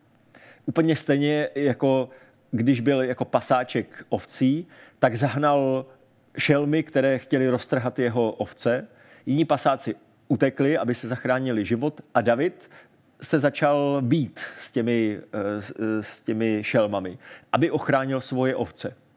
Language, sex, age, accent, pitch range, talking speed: Czech, male, 40-59, native, 120-145 Hz, 115 wpm